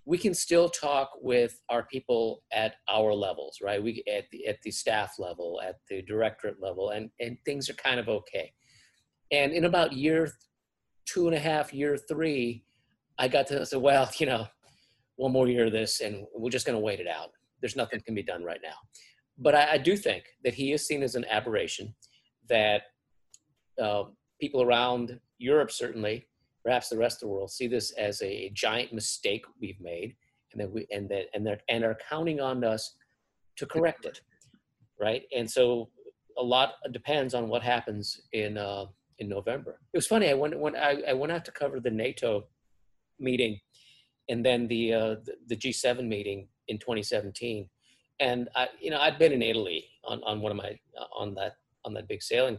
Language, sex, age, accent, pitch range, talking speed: English, male, 40-59, American, 110-150 Hz, 195 wpm